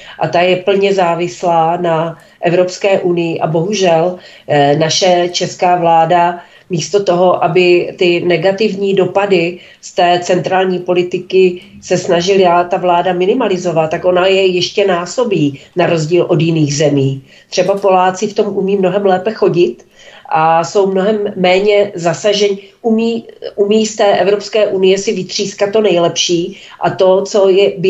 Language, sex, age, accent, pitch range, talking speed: Czech, female, 40-59, native, 175-205 Hz, 145 wpm